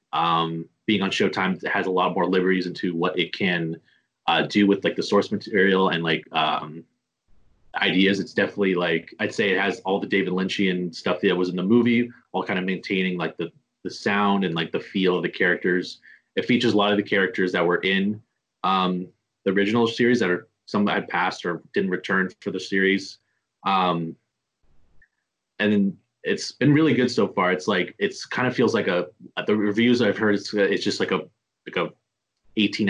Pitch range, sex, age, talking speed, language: 90-110 Hz, male, 30-49, 200 wpm, English